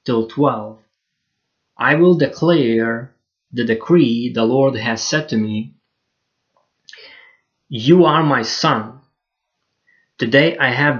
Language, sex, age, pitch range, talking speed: English, male, 20-39, 115-150 Hz, 110 wpm